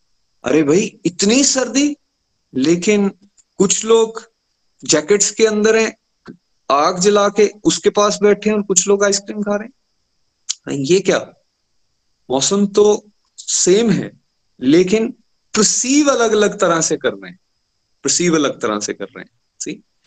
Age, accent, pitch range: 30-49, native, 135-200 Hz